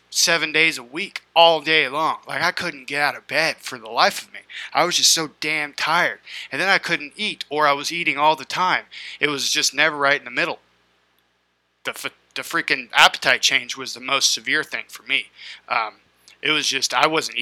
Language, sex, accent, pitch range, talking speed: English, male, American, 120-165 Hz, 220 wpm